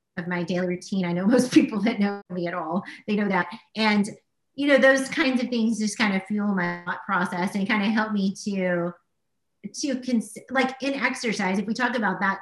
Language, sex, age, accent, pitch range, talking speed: English, female, 30-49, American, 190-240 Hz, 215 wpm